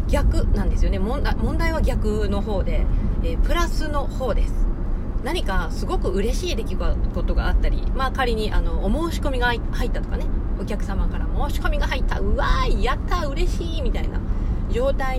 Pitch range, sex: 85-95 Hz, female